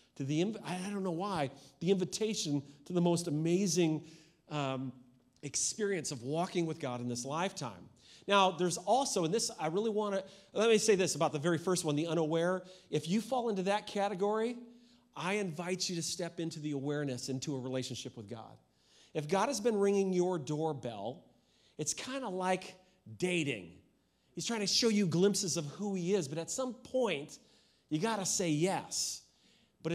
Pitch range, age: 150-200 Hz, 40-59